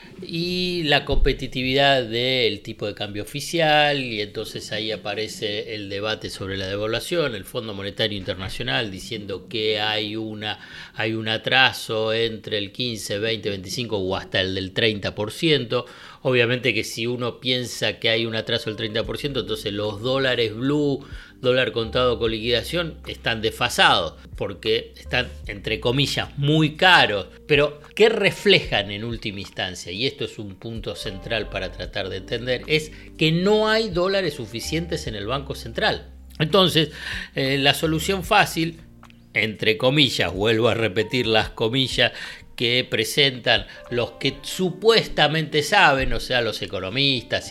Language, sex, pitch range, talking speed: Spanish, male, 110-150 Hz, 140 wpm